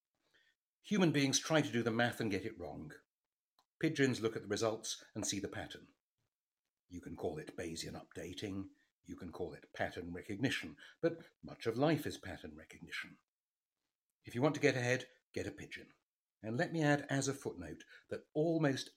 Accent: British